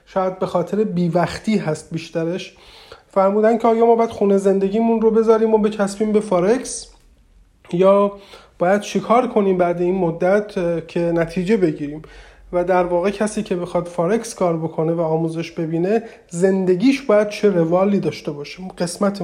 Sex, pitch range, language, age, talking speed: male, 175-215 Hz, Persian, 30-49, 150 wpm